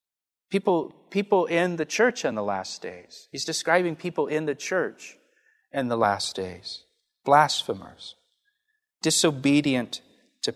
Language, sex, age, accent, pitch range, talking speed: English, male, 30-49, American, 130-185 Hz, 125 wpm